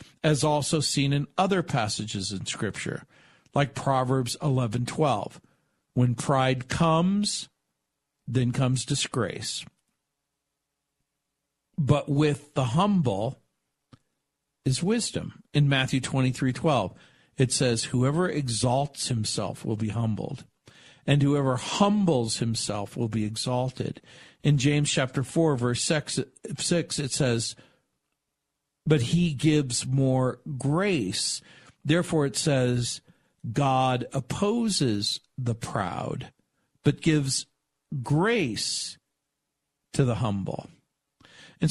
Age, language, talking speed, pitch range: 50-69, English, 100 wpm, 120-155 Hz